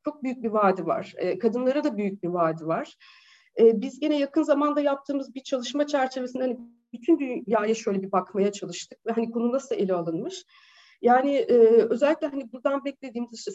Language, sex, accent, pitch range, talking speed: Turkish, female, native, 200-275 Hz, 170 wpm